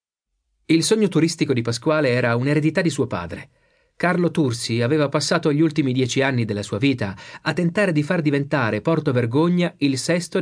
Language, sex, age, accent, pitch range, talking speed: Italian, male, 40-59, native, 115-165 Hz, 175 wpm